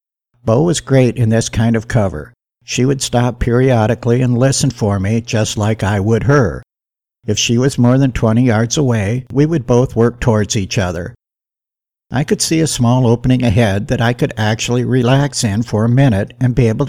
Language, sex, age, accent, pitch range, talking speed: English, male, 60-79, American, 110-130 Hz, 195 wpm